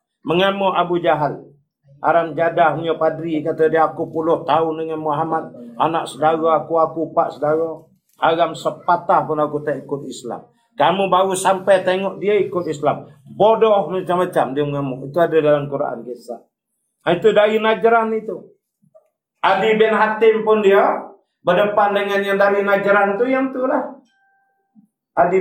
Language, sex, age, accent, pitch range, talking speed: English, male, 50-69, Indonesian, 150-200 Hz, 145 wpm